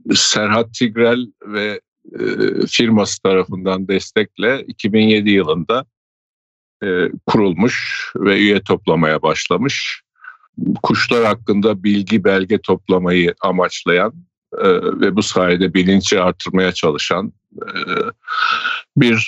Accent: native